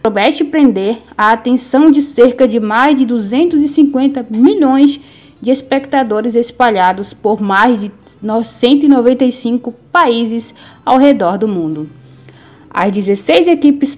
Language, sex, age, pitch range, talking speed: Portuguese, female, 20-39, 215-275 Hz, 110 wpm